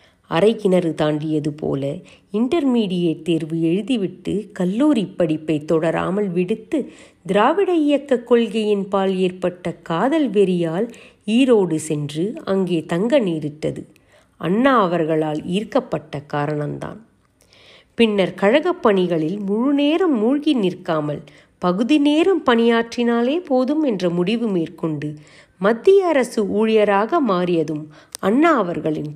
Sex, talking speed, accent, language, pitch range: female, 90 wpm, native, Tamil, 165-245 Hz